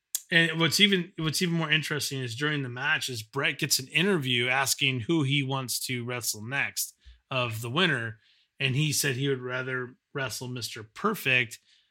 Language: English